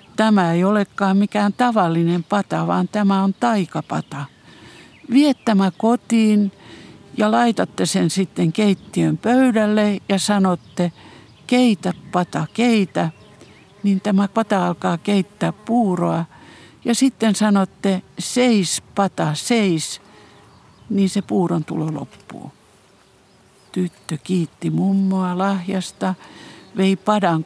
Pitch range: 165-205 Hz